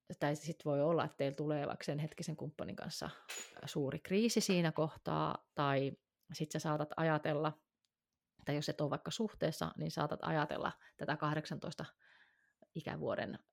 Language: Finnish